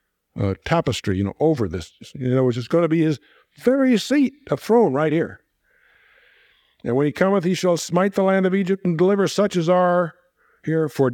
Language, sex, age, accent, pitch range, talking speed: English, male, 50-69, American, 110-160 Hz, 205 wpm